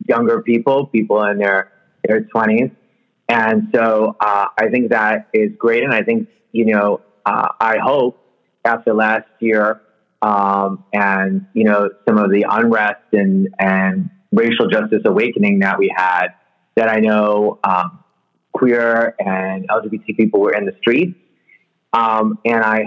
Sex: male